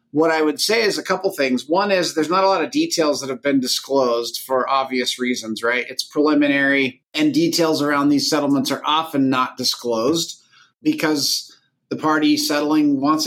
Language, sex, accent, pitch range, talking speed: English, male, American, 140-165 Hz, 180 wpm